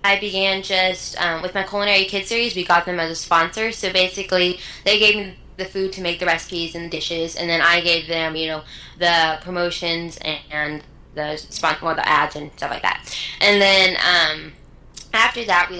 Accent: American